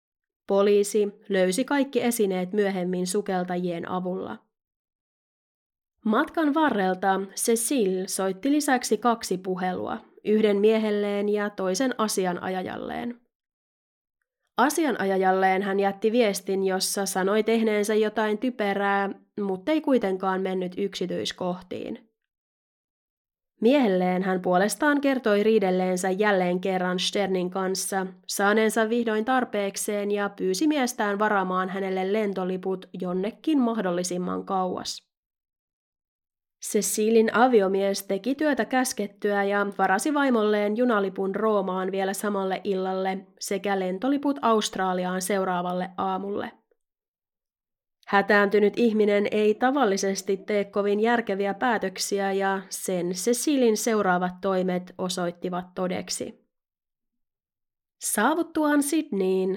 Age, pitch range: 20-39, 185-225 Hz